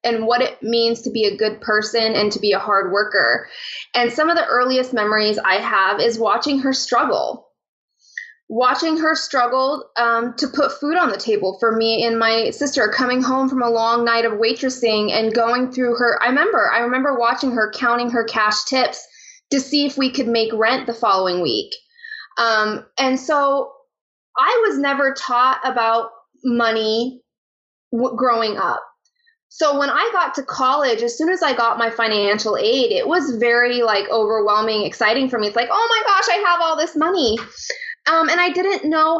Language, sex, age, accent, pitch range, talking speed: English, female, 20-39, American, 230-295 Hz, 190 wpm